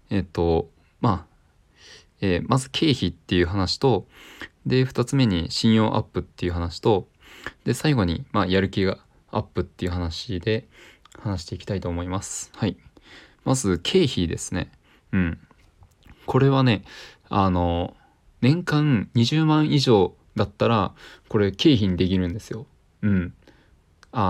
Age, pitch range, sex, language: 20-39, 90-120 Hz, male, Japanese